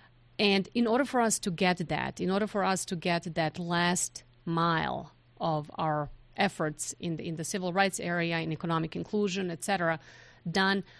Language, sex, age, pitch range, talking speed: English, female, 30-49, 160-195 Hz, 180 wpm